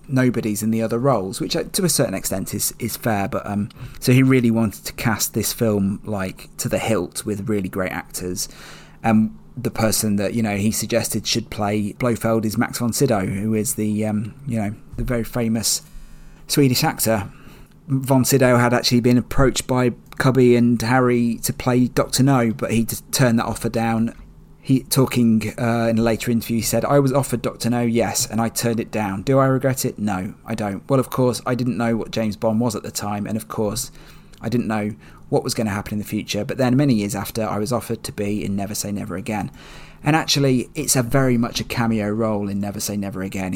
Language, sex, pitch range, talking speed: English, male, 105-125 Hz, 220 wpm